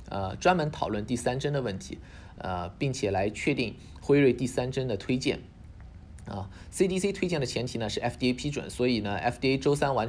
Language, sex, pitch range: Chinese, male, 100-135 Hz